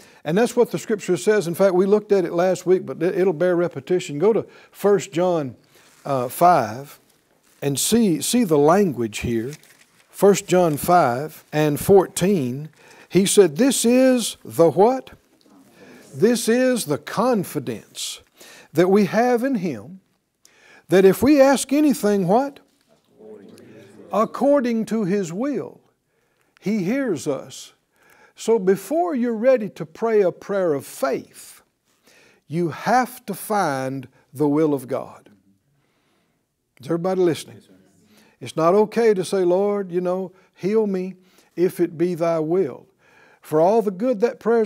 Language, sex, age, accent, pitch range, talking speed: English, male, 60-79, American, 155-220 Hz, 140 wpm